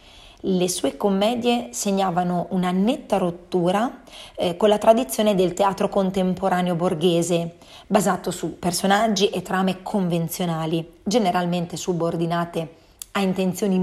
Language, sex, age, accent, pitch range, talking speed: Italian, female, 30-49, native, 170-200 Hz, 110 wpm